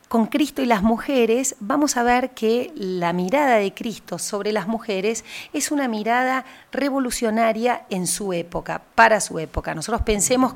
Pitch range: 185-245 Hz